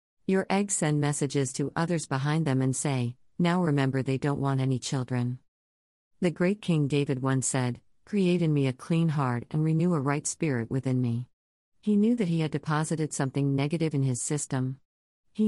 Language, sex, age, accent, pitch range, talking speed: English, female, 50-69, American, 130-165 Hz, 185 wpm